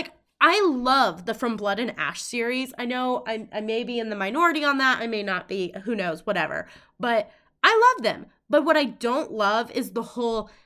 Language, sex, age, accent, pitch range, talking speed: English, female, 20-39, American, 205-255 Hz, 215 wpm